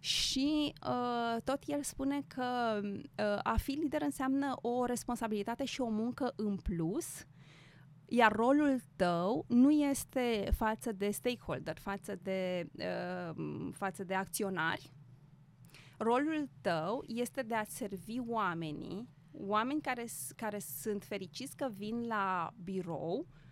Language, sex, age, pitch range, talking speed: Romanian, female, 30-49, 185-250 Hz, 110 wpm